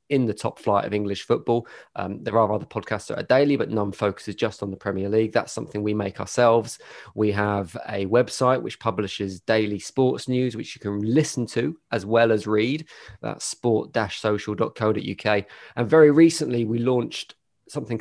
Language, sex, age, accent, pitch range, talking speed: English, male, 20-39, British, 105-120 Hz, 180 wpm